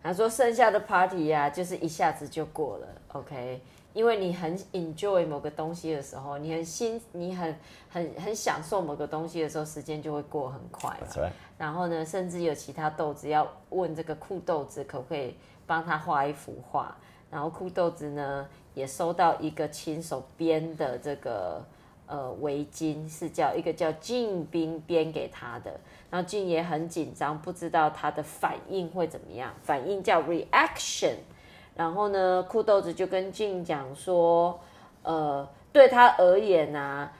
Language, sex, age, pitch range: English, female, 20-39, 155-185 Hz